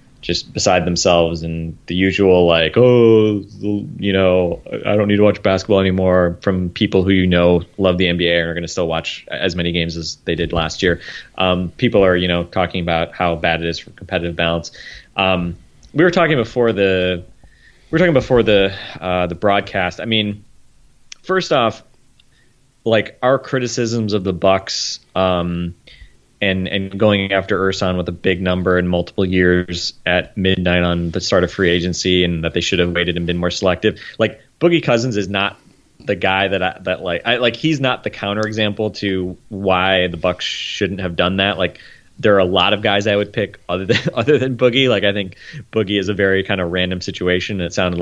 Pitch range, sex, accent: 90-105 Hz, male, American